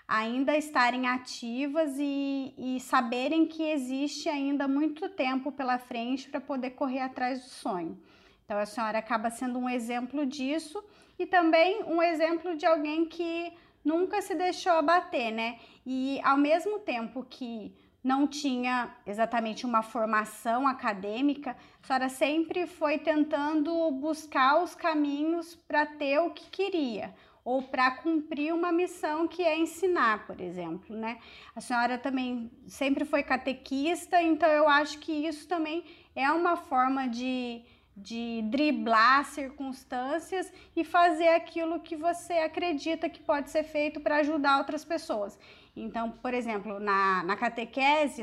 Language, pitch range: Portuguese, 245-325 Hz